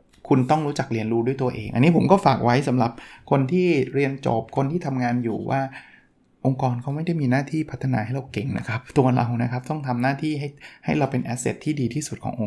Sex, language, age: male, Thai, 20-39